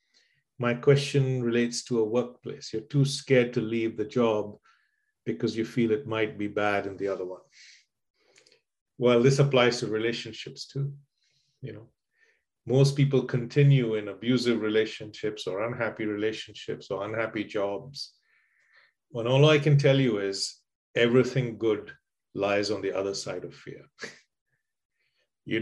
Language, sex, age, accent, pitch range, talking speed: English, male, 40-59, Indian, 110-140 Hz, 145 wpm